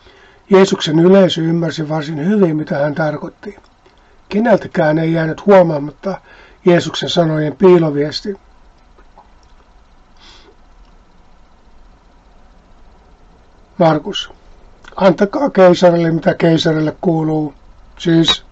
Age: 60-79